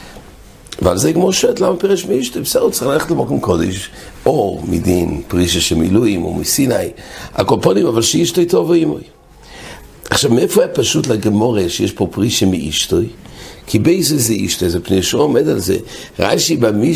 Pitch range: 95-125 Hz